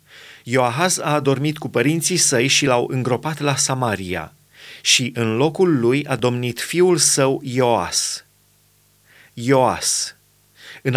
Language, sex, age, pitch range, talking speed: Romanian, male, 30-49, 120-150 Hz, 120 wpm